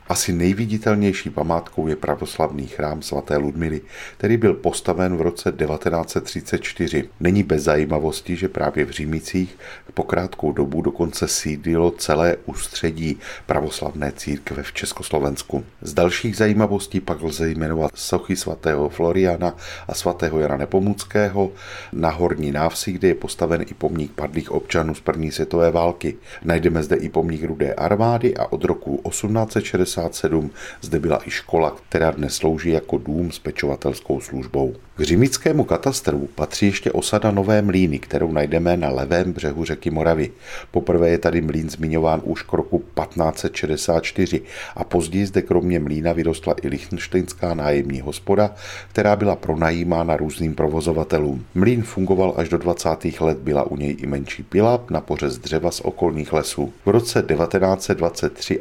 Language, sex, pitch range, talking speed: Czech, male, 75-90 Hz, 145 wpm